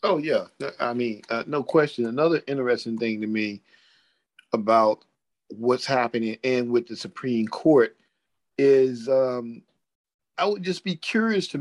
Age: 50-69